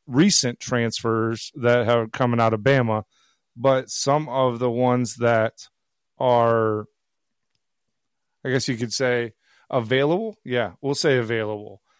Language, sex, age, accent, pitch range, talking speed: English, male, 30-49, American, 115-135 Hz, 125 wpm